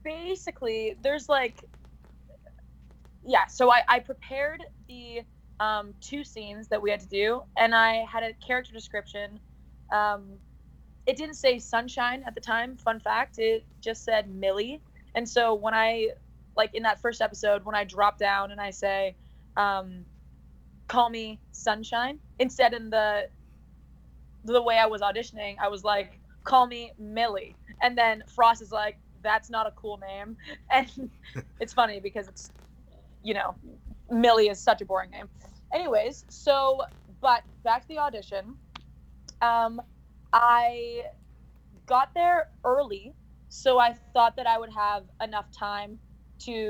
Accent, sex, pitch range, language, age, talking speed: American, female, 205-245 Hz, English, 20-39, 150 wpm